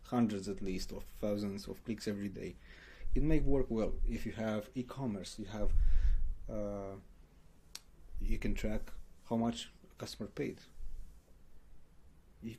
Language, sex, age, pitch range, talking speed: English, male, 30-49, 100-115 Hz, 140 wpm